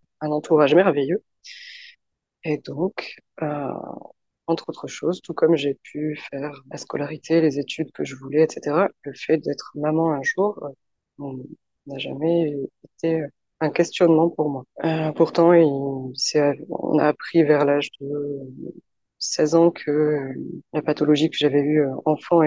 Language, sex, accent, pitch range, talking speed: French, female, French, 145-175 Hz, 145 wpm